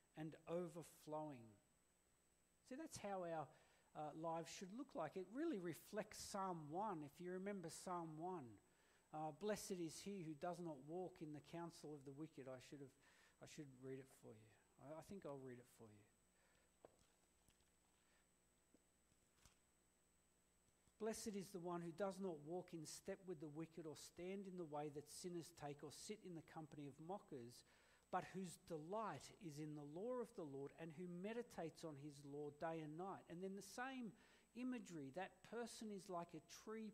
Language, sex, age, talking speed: English, male, 50-69, 180 wpm